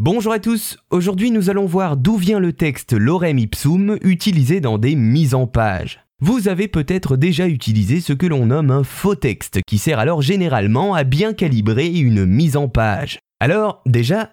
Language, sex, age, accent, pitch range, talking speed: French, male, 20-39, French, 115-175 Hz, 185 wpm